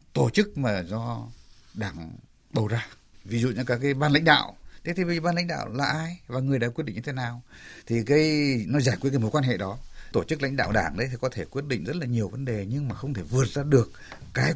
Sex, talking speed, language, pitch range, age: male, 265 wpm, Vietnamese, 120-175 Hz, 60-79